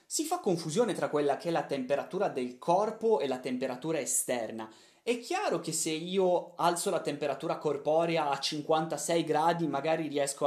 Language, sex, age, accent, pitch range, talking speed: Italian, male, 20-39, native, 130-185 Hz, 165 wpm